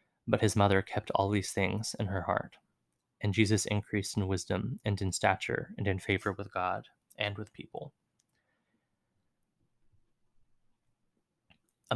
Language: English